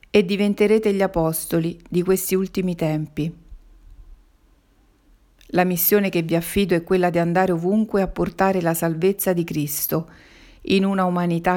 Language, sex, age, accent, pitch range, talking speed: Italian, female, 40-59, native, 165-190 Hz, 140 wpm